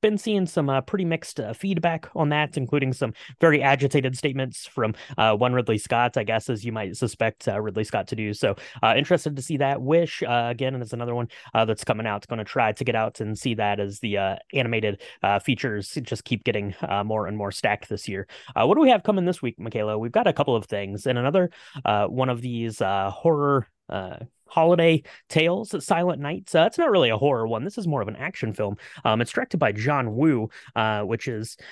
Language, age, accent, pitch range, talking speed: English, 30-49, American, 110-140 Hz, 240 wpm